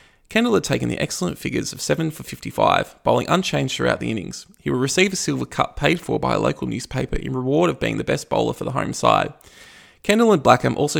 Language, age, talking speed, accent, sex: English, 20-39, 230 wpm, Australian, male